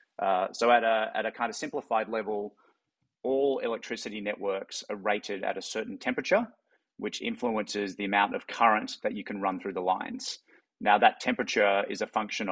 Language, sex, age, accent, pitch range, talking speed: English, male, 30-49, Australian, 100-135 Hz, 180 wpm